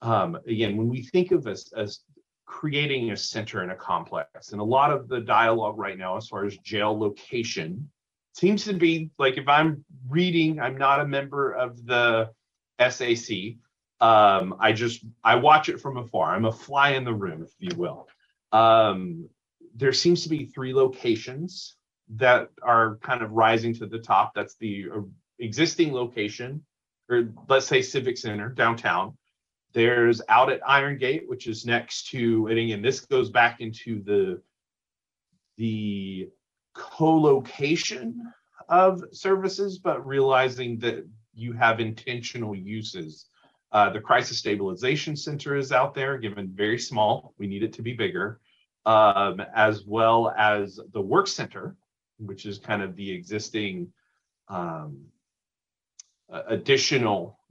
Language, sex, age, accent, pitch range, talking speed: English, male, 30-49, American, 110-145 Hz, 150 wpm